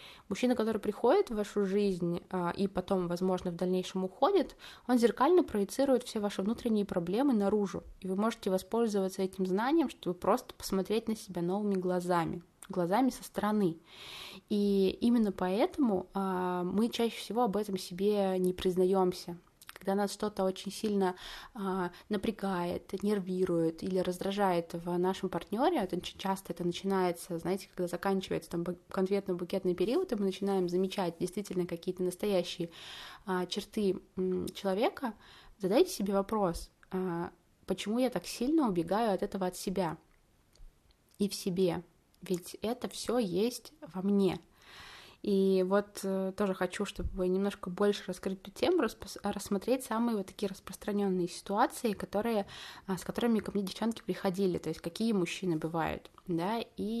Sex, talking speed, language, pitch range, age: female, 135 wpm, Russian, 185-210 Hz, 20-39